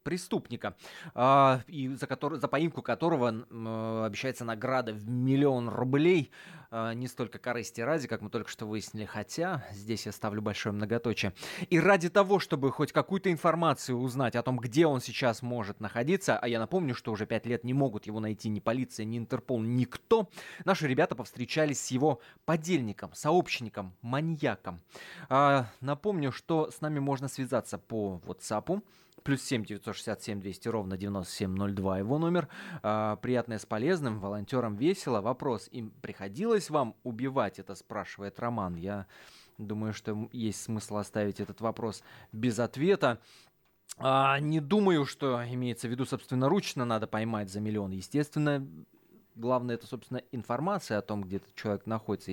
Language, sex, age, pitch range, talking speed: Russian, male, 20-39, 110-145 Hz, 155 wpm